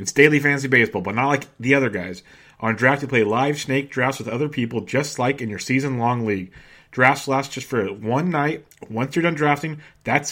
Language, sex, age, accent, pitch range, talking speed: English, male, 30-49, American, 120-145 Hz, 215 wpm